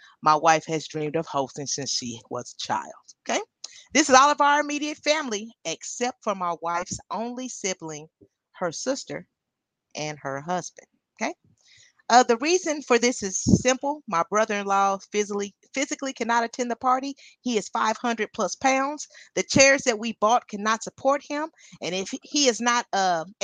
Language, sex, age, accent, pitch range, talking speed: English, female, 40-59, American, 170-245 Hz, 165 wpm